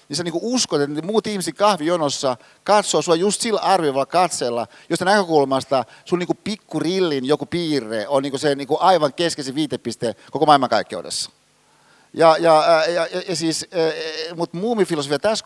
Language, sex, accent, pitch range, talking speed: Finnish, male, native, 140-180 Hz, 155 wpm